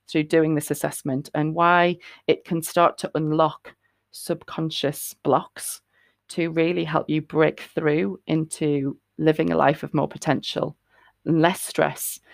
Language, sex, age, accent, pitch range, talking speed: English, female, 30-49, British, 150-170 Hz, 135 wpm